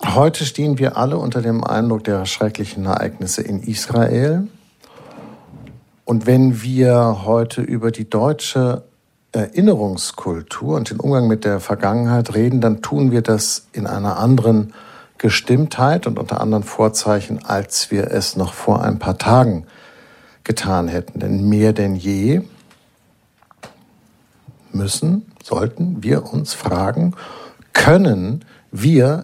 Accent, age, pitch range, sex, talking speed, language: German, 60-79, 105-135 Hz, male, 125 wpm, German